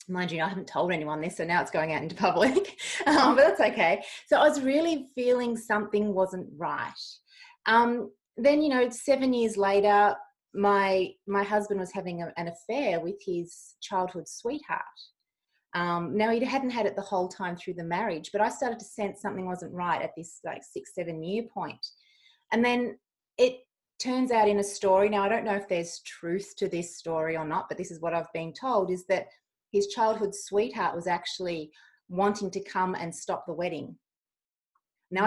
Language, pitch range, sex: English, 180-230 Hz, female